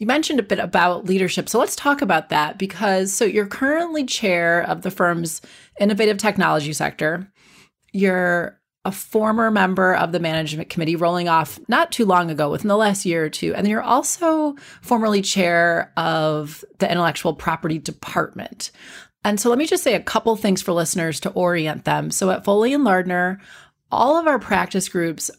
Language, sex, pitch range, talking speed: English, female, 170-210 Hz, 180 wpm